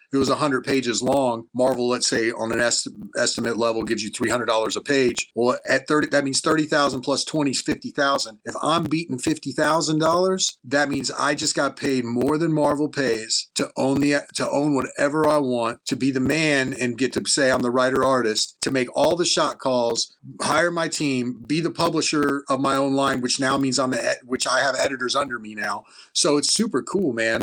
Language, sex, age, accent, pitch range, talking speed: English, male, 30-49, American, 120-150 Hz, 210 wpm